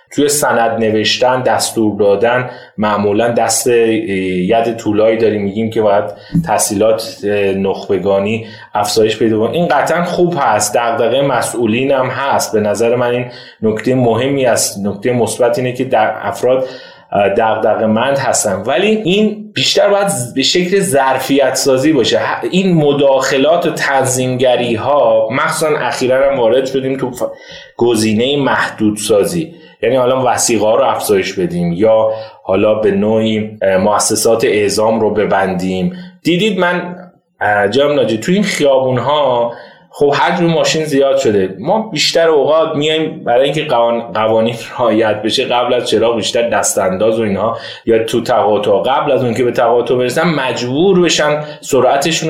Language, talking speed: Persian, 140 wpm